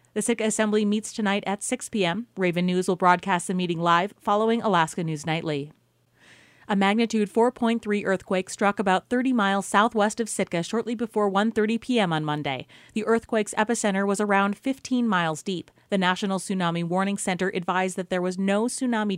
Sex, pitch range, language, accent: female, 180-220 Hz, English, American